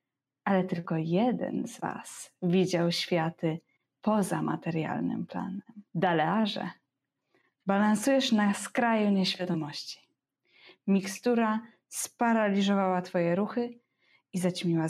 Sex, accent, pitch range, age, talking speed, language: female, native, 170-205 Hz, 20-39, 85 wpm, Polish